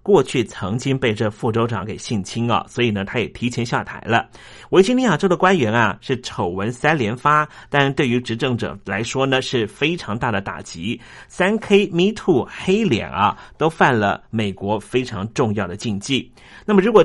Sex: male